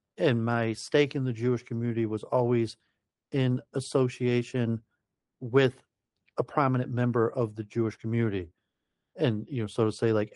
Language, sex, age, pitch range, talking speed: English, male, 40-59, 110-125 Hz, 150 wpm